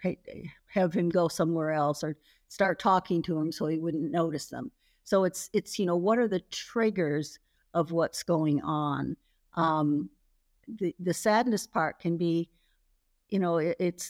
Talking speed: 160 wpm